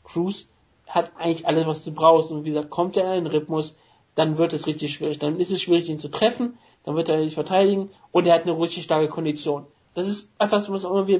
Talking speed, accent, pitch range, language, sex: 245 wpm, German, 155-195 Hz, German, male